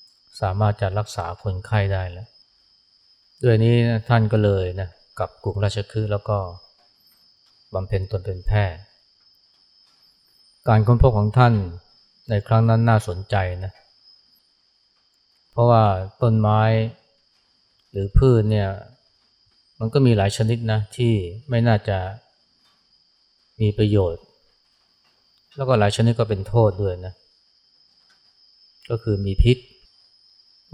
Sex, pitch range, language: male, 95-115 Hz, Thai